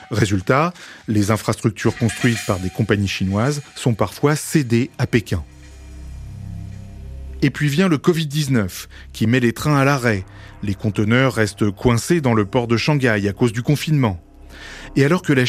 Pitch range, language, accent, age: 105-150 Hz, French, French, 30-49